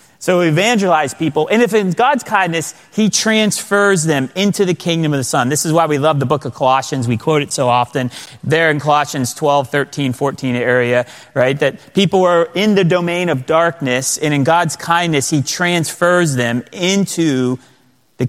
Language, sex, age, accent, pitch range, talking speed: English, male, 30-49, American, 140-180 Hz, 185 wpm